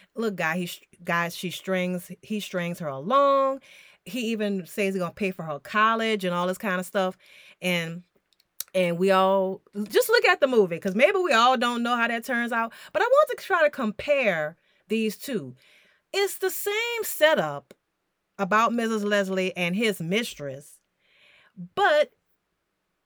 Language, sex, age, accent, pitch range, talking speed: English, female, 30-49, American, 180-245 Hz, 165 wpm